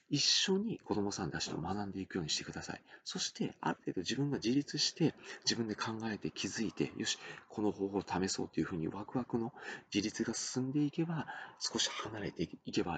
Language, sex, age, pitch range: Japanese, male, 40-59, 95-120 Hz